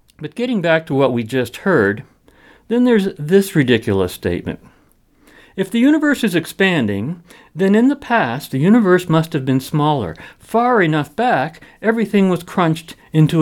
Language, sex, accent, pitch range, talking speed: English, male, American, 150-230 Hz, 155 wpm